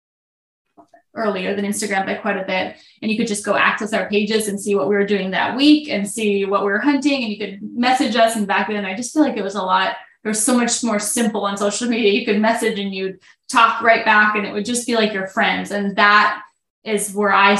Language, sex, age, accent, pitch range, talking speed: English, female, 10-29, American, 200-225 Hz, 260 wpm